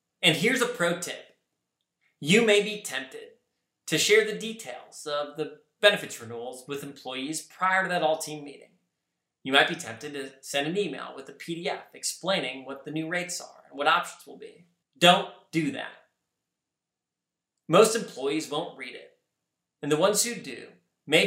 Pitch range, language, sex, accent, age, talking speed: 145-200 Hz, English, male, American, 30-49, 170 wpm